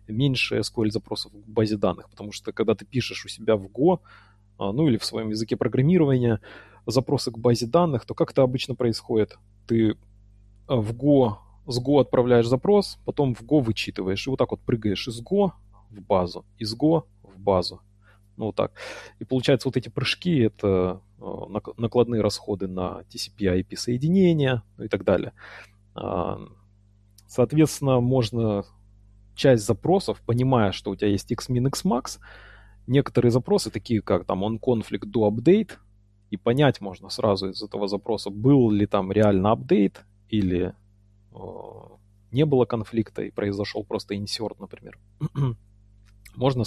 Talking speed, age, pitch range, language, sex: 145 wpm, 30-49, 100-125 Hz, Russian, male